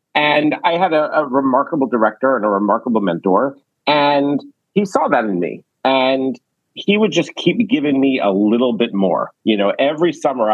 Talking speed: 180 wpm